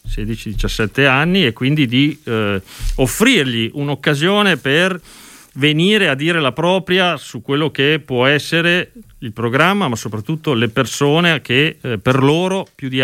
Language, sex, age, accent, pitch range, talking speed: Italian, male, 40-59, native, 125-170 Hz, 145 wpm